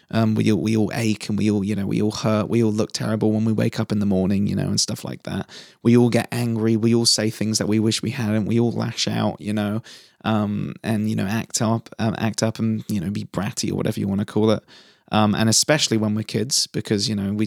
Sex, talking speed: male, 275 wpm